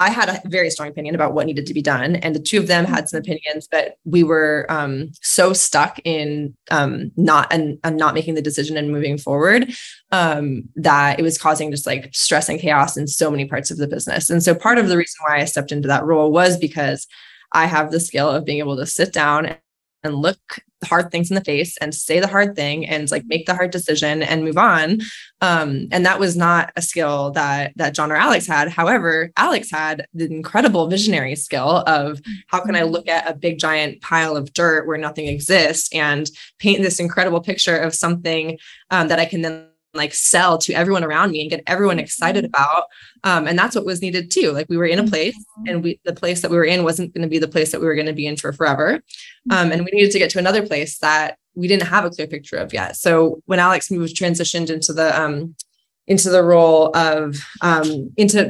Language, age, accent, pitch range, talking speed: English, 20-39, American, 150-180 Hz, 230 wpm